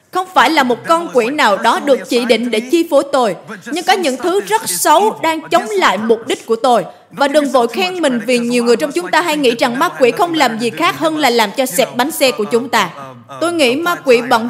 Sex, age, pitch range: female, 20-39, 230-315 Hz